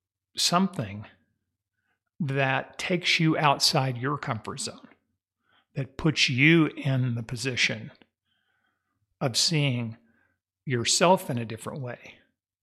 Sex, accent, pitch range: male, American, 105-140 Hz